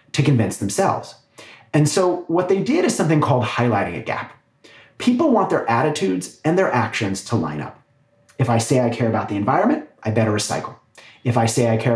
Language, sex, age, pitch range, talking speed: English, male, 30-49, 115-190 Hz, 200 wpm